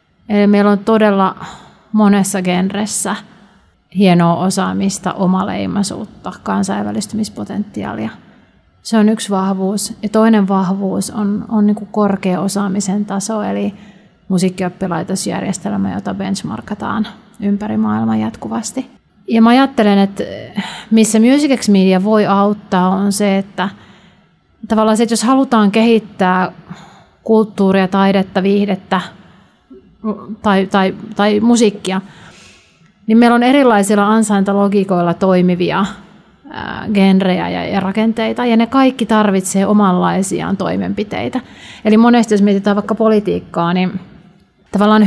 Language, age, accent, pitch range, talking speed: Finnish, 30-49, native, 190-215 Hz, 105 wpm